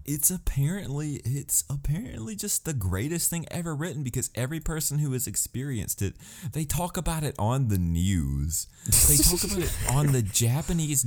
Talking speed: 170 wpm